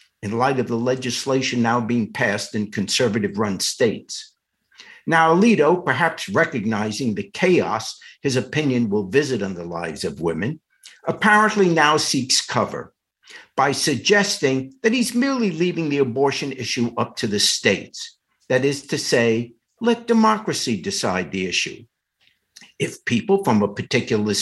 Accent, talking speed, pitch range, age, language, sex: American, 140 wpm, 120-175 Hz, 60-79, English, male